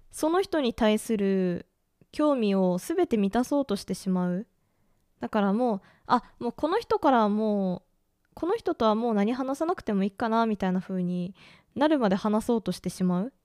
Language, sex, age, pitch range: Japanese, female, 20-39, 190-295 Hz